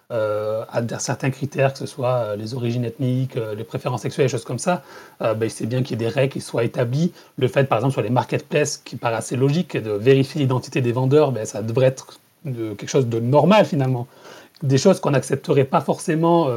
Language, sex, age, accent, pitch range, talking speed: French, male, 30-49, French, 125-155 Hz, 220 wpm